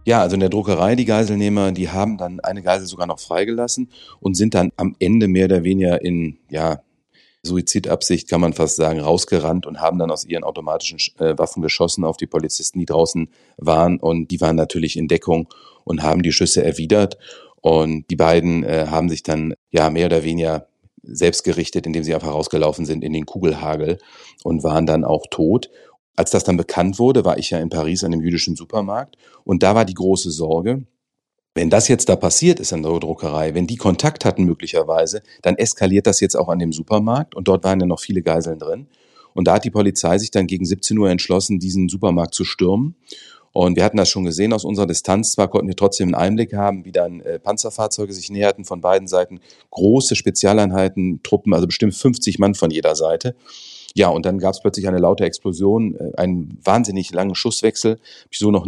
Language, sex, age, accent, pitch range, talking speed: German, male, 40-59, German, 85-100 Hz, 200 wpm